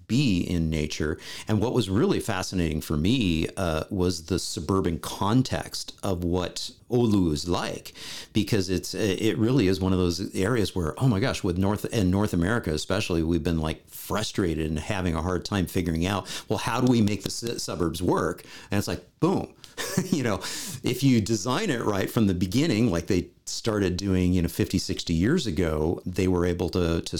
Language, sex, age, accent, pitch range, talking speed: English, male, 50-69, American, 85-110 Hz, 190 wpm